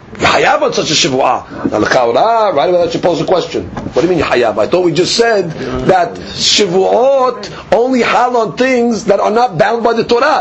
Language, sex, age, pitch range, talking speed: English, male, 40-59, 170-245 Hz, 200 wpm